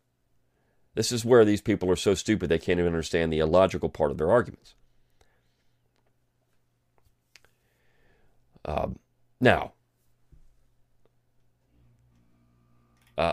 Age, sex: 40-59, male